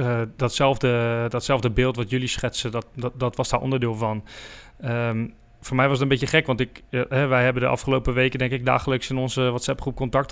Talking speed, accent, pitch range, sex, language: 220 wpm, Dutch, 115-130 Hz, male, Dutch